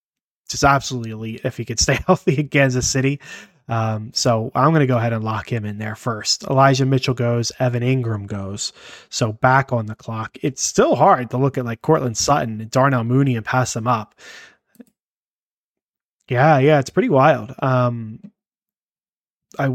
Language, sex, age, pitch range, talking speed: English, male, 20-39, 115-140 Hz, 175 wpm